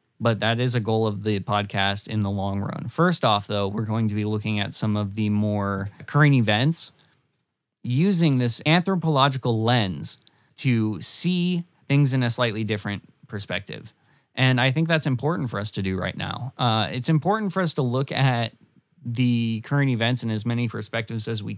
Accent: American